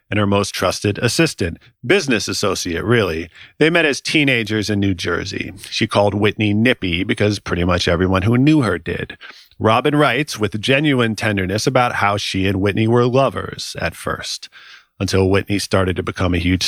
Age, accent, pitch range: 40-59, American, 95-125 Hz